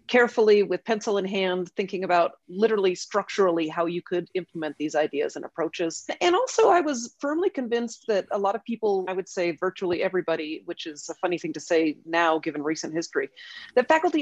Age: 40-59